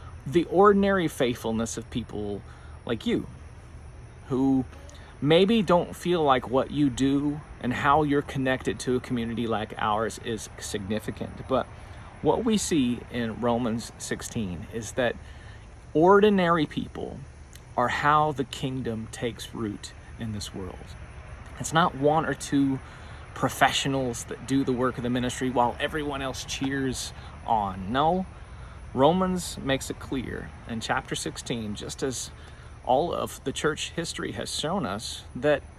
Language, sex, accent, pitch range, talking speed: English, male, American, 110-145 Hz, 140 wpm